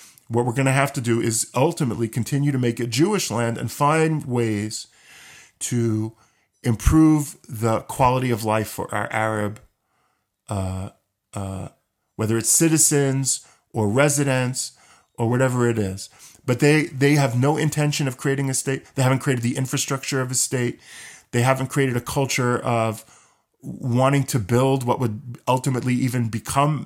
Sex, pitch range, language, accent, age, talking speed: male, 115-145 Hz, English, American, 40-59, 155 wpm